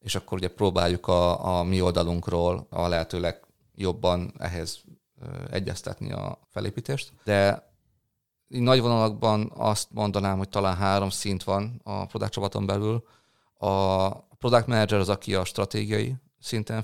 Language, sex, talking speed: Hungarian, male, 130 wpm